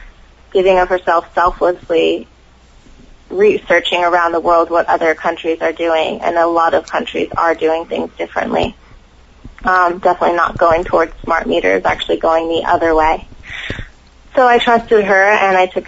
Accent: American